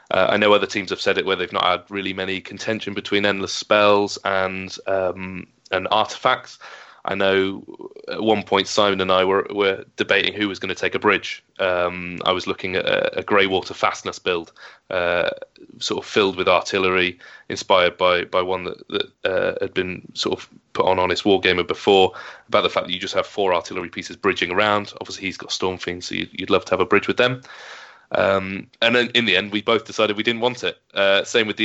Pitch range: 95-110 Hz